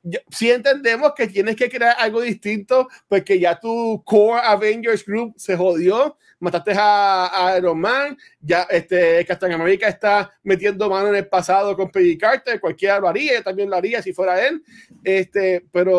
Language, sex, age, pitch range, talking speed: Spanish, male, 20-39, 185-230 Hz, 170 wpm